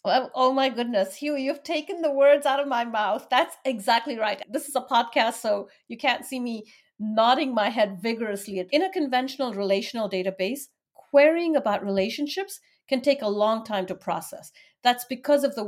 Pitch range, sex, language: 205-275 Hz, female, English